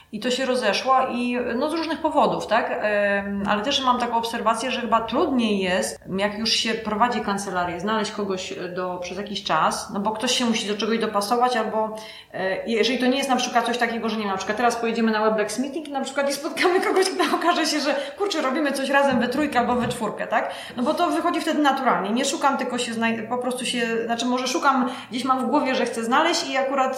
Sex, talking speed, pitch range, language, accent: female, 225 wpm, 200-250 Hz, Polish, native